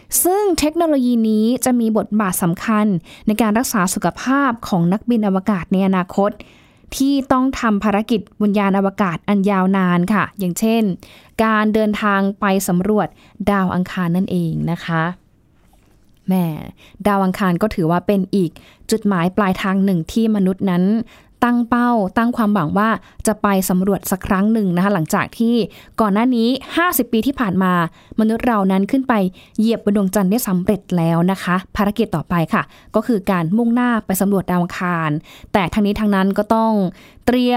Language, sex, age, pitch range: Thai, female, 20-39, 190-230 Hz